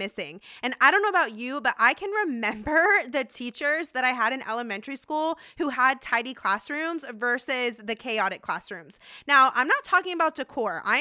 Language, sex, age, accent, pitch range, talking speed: English, female, 20-39, American, 230-295 Hz, 185 wpm